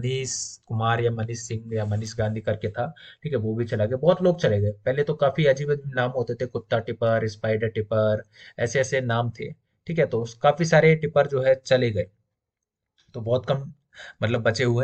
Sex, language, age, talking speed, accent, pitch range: male, Hindi, 30-49, 45 wpm, native, 110-140 Hz